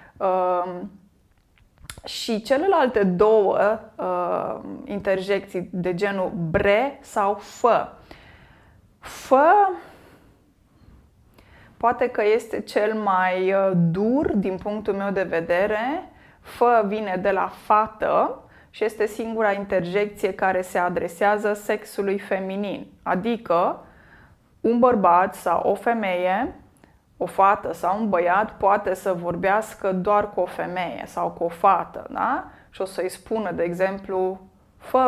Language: Romanian